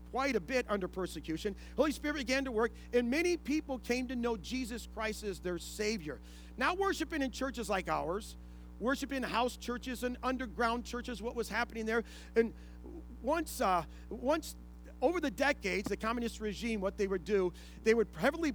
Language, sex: English, male